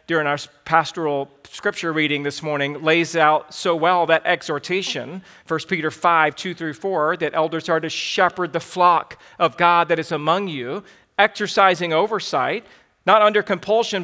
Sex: male